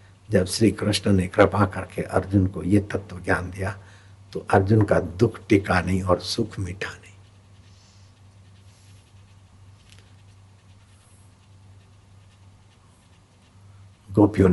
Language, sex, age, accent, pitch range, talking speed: Hindi, male, 60-79, native, 95-100 Hz, 95 wpm